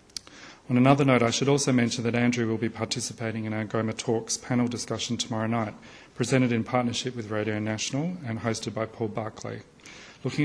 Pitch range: 115-130 Hz